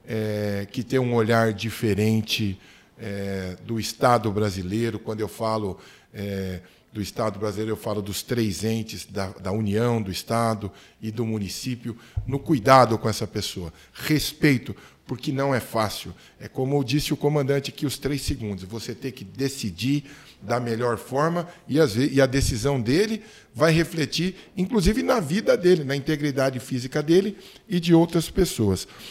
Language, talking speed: Portuguese, 150 wpm